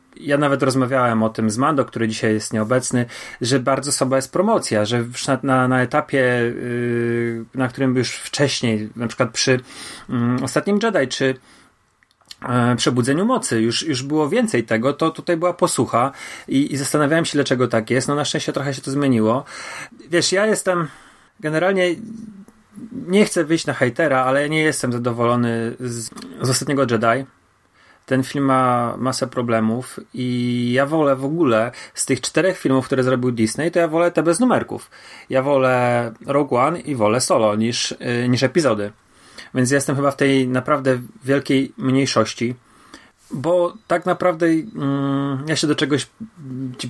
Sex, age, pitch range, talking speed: male, 30-49, 120-150 Hz, 160 wpm